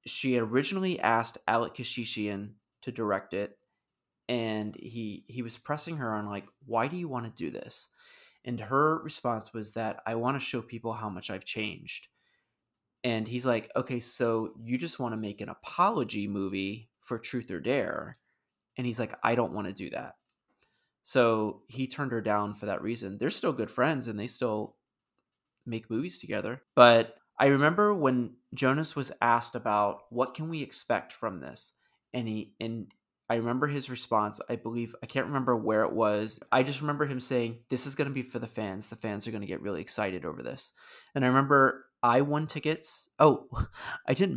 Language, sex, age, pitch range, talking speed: English, male, 20-39, 110-130 Hz, 190 wpm